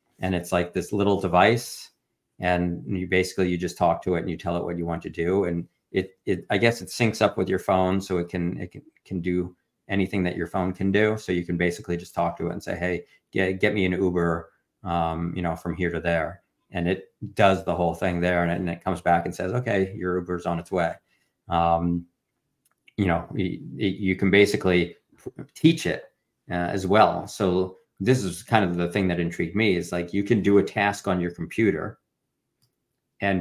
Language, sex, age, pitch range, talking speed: English, male, 40-59, 85-95 Hz, 220 wpm